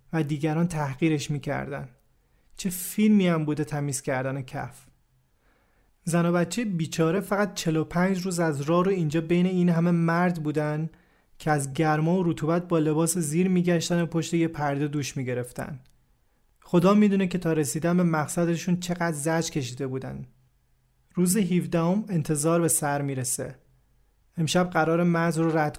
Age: 30-49